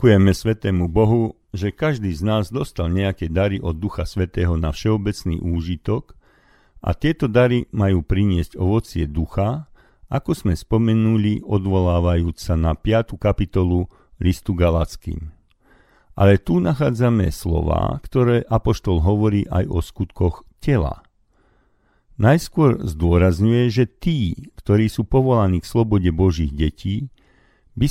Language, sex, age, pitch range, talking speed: Slovak, male, 50-69, 85-115 Hz, 120 wpm